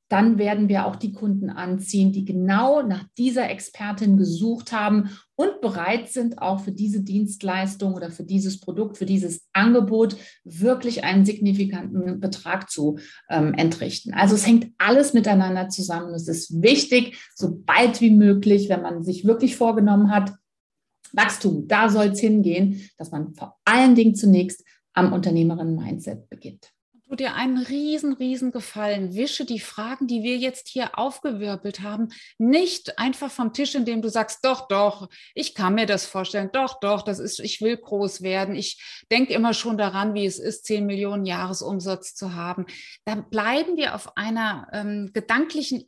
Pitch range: 195-240 Hz